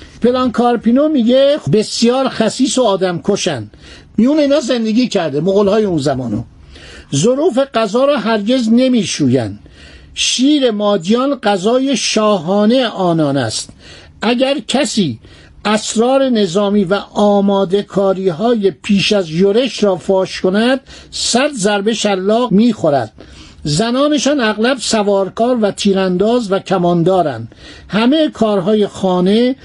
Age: 60-79